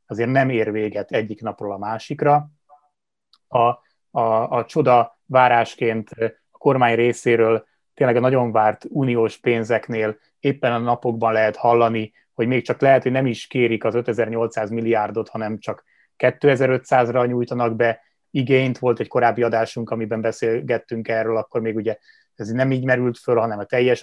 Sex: male